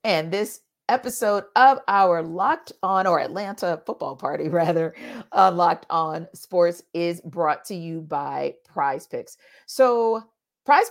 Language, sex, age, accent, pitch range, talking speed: English, female, 40-59, American, 170-255 Hz, 140 wpm